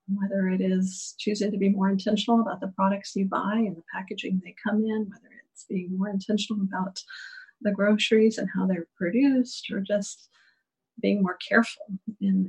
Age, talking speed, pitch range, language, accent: 40-59, 180 wpm, 190-220 Hz, English, American